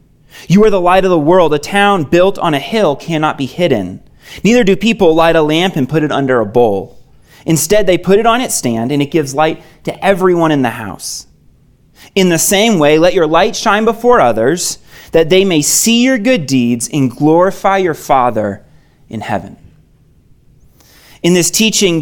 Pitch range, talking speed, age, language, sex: 140-190 Hz, 190 wpm, 30-49, English, male